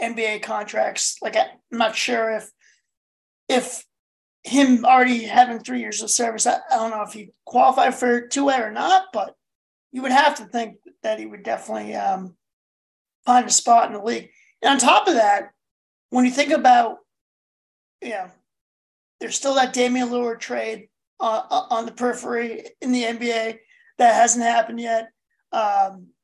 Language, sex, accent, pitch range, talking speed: English, male, American, 220-260 Hz, 165 wpm